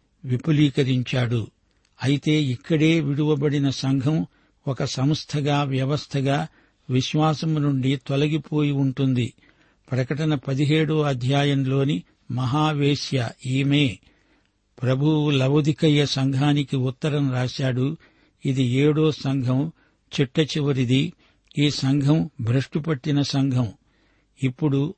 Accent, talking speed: native, 75 wpm